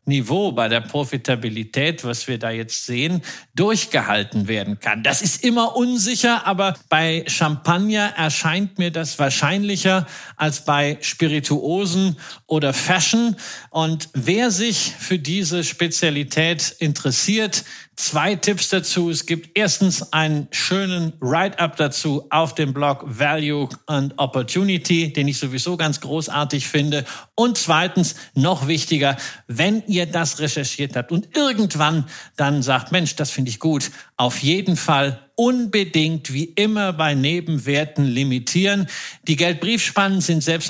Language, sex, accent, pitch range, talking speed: German, male, German, 145-180 Hz, 130 wpm